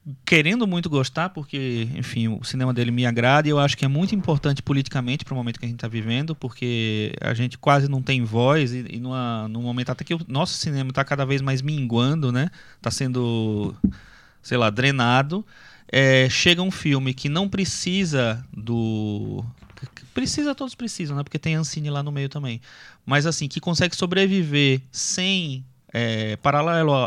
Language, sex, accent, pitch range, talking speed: Portuguese, male, Brazilian, 125-170 Hz, 180 wpm